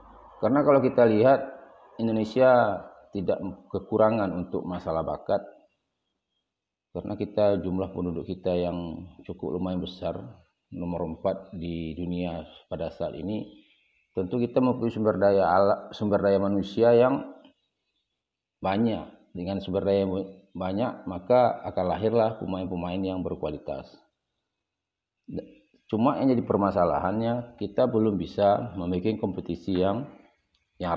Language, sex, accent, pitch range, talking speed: Indonesian, male, native, 90-115 Hz, 115 wpm